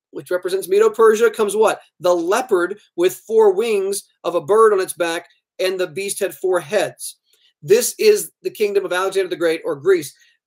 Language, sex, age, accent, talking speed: English, male, 40-59, American, 185 wpm